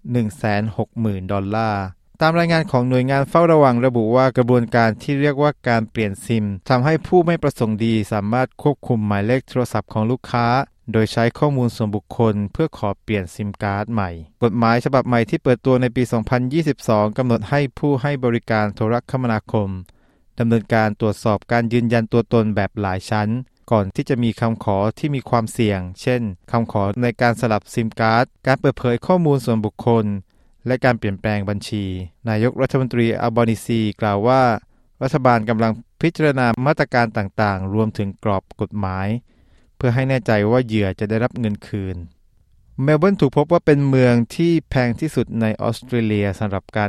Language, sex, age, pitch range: Thai, male, 20-39, 105-125 Hz